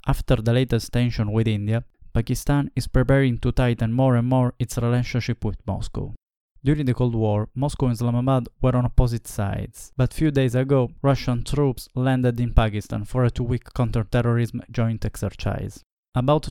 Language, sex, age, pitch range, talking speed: English, male, 20-39, 110-125 Hz, 165 wpm